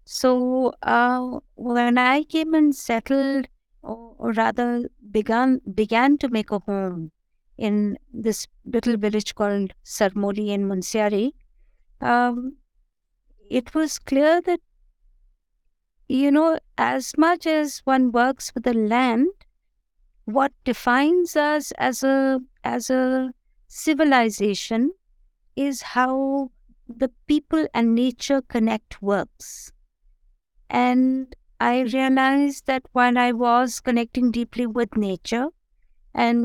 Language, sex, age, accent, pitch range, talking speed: English, female, 50-69, Indian, 220-265 Hz, 110 wpm